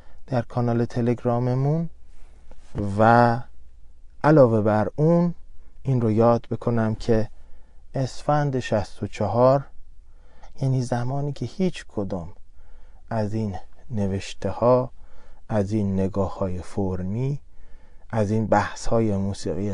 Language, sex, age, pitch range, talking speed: Persian, male, 30-49, 95-125 Hz, 95 wpm